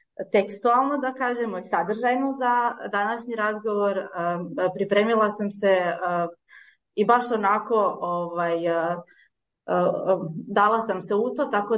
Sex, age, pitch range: female, 20-39, 175-215 Hz